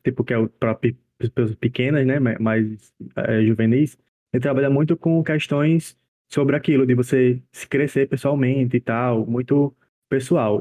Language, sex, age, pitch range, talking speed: Portuguese, male, 20-39, 115-135 Hz, 145 wpm